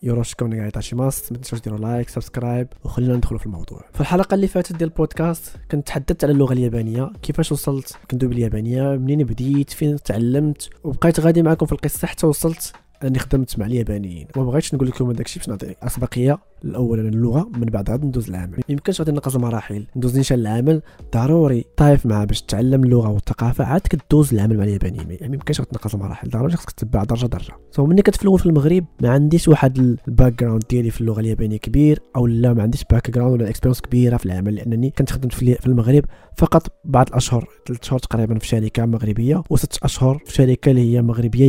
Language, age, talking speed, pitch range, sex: Arabic, 20-39, 190 wpm, 120-145 Hz, male